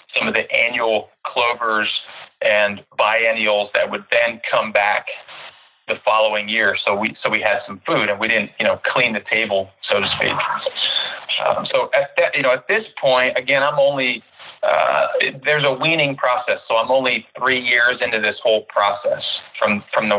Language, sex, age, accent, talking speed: English, male, 30-49, American, 185 wpm